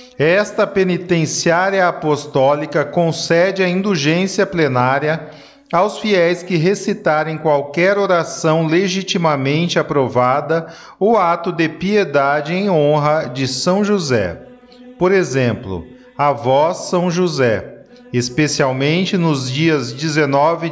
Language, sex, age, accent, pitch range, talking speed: Portuguese, male, 40-59, Brazilian, 145-190 Hz, 100 wpm